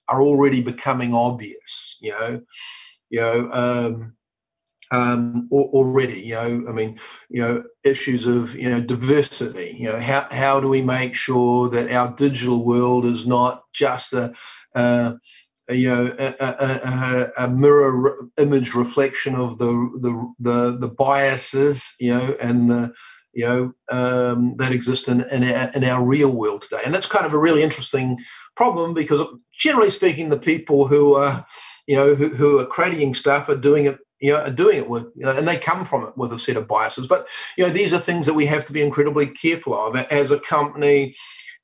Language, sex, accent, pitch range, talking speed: English, male, Australian, 125-140 Hz, 190 wpm